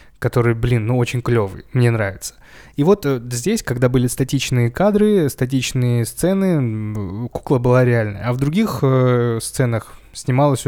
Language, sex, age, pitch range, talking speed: Russian, male, 20-39, 115-140 Hz, 135 wpm